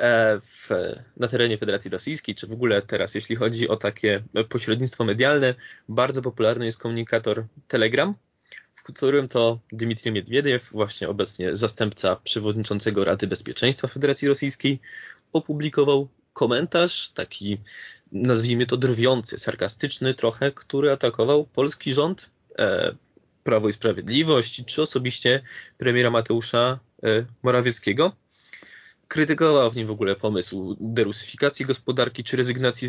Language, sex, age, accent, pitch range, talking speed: Polish, male, 20-39, native, 110-145 Hz, 115 wpm